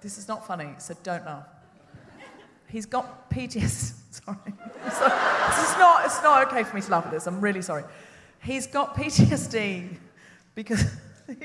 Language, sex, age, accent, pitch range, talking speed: English, female, 30-49, British, 175-240 Hz, 155 wpm